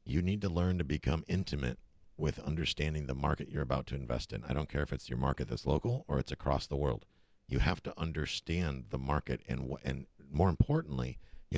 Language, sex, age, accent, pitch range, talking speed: English, male, 50-69, American, 65-85 Hz, 220 wpm